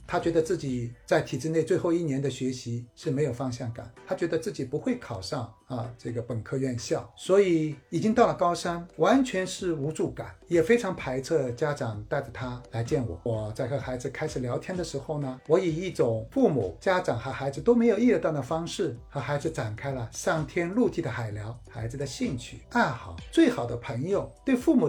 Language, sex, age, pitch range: Chinese, male, 60-79, 120-160 Hz